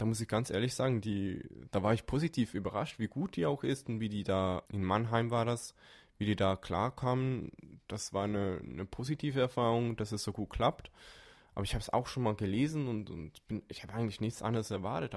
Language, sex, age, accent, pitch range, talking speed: German, male, 20-39, German, 100-120 Hz, 225 wpm